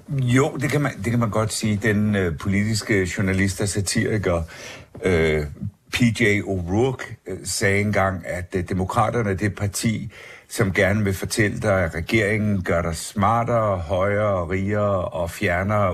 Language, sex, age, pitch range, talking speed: Danish, male, 60-79, 90-105 Hz, 160 wpm